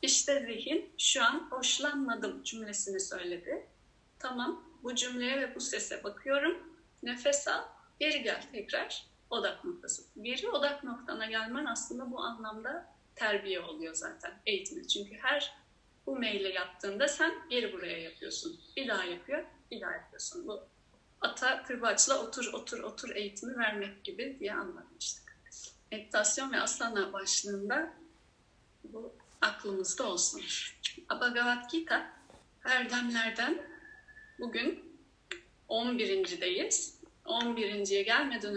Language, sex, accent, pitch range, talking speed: Turkish, female, native, 205-320 Hz, 120 wpm